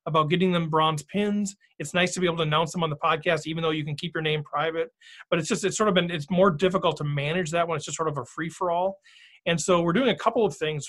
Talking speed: 285 wpm